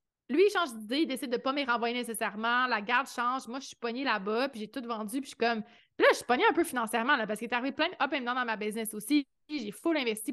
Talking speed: 295 wpm